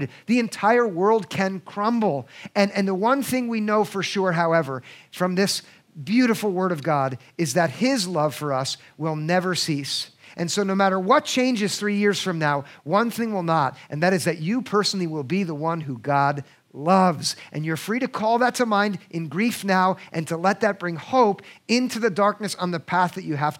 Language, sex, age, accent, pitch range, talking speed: English, male, 50-69, American, 160-210 Hz, 210 wpm